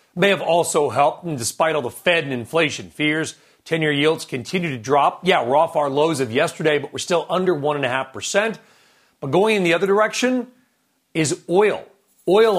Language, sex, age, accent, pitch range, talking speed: English, male, 40-59, American, 145-190 Hz, 180 wpm